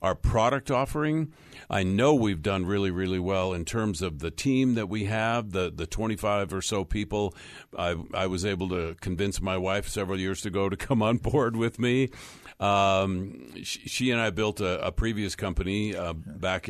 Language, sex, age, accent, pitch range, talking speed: English, male, 50-69, American, 90-110 Hz, 190 wpm